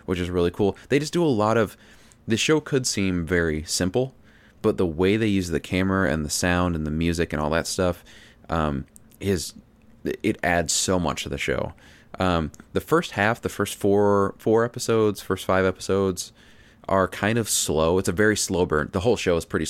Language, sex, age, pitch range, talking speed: English, male, 20-39, 80-105 Hz, 205 wpm